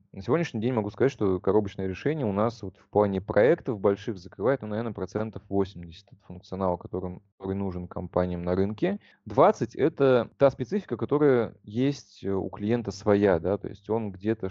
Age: 20-39